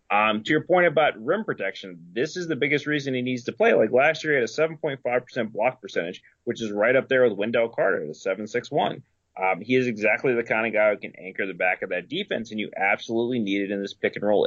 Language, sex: English, male